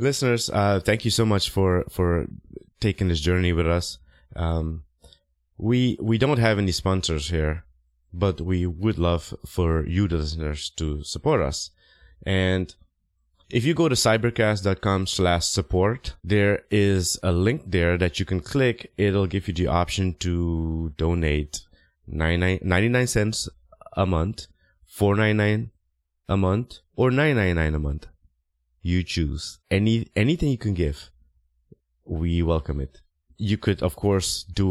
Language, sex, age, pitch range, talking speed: English, male, 20-39, 80-105 Hz, 150 wpm